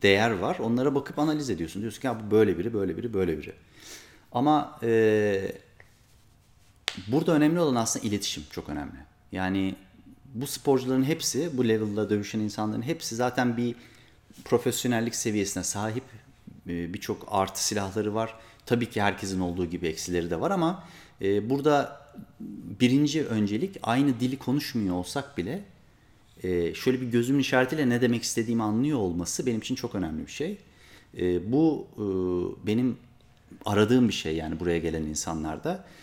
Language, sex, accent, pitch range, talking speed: Turkish, male, native, 95-145 Hz, 145 wpm